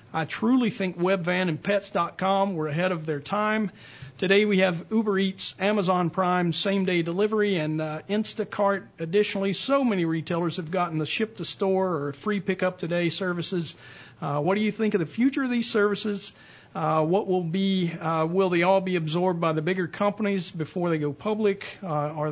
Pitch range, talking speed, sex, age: 155-195 Hz, 175 wpm, male, 40-59